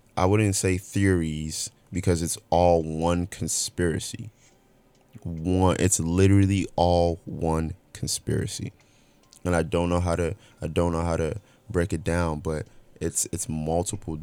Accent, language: American, English